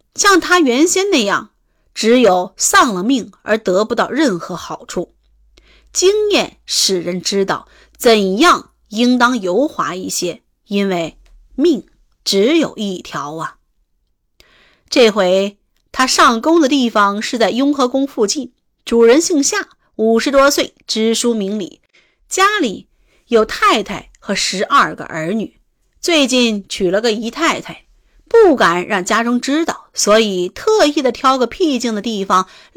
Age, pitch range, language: 30-49, 210-310 Hz, Chinese